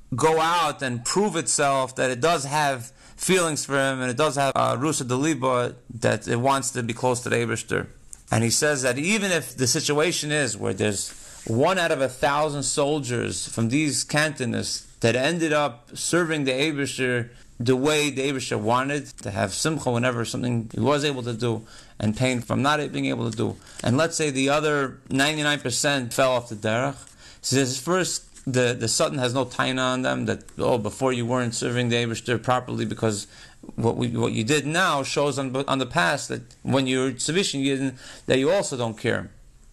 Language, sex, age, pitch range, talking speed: English, male, 30-49, 120-150 Hz, 200 wpm